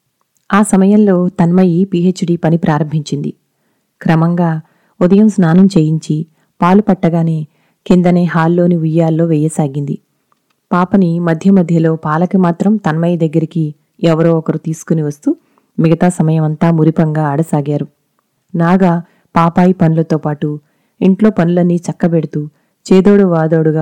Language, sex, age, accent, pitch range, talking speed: Telugu, female, 30-49, native, 155-180 Hz, 100 wpm